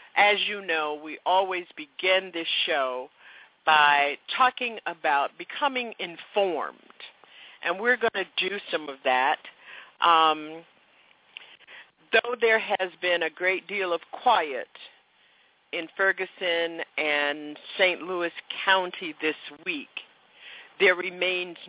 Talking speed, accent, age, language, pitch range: 115 wpm, American, 50-69, English, 155-200 Hz